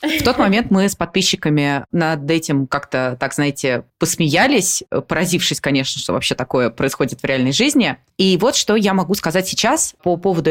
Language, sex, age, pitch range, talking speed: Russian, female, 20-39, 145-190 Hz, 170 wpm